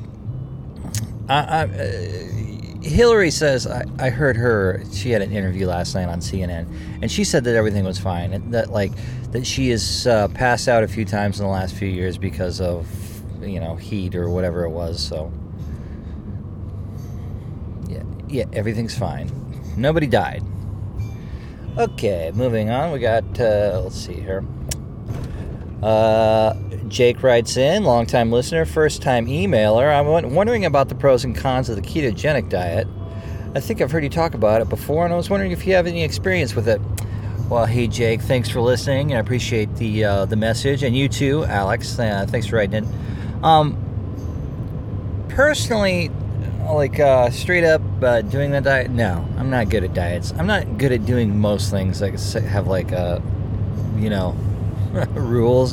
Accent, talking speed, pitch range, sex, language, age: American, 170 wpm, 95-120 Hz, male, English, 20-39